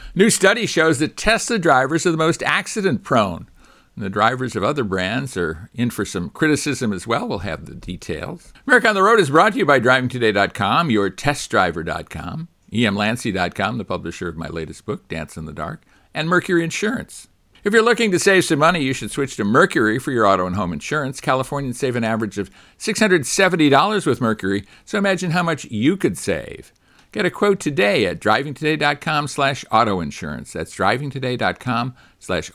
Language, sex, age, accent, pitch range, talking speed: English, male, 60-79, American, 100-150 Hz, 175 wpm